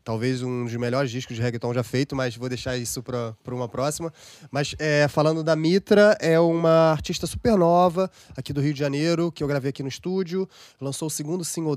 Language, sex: Portuguese, male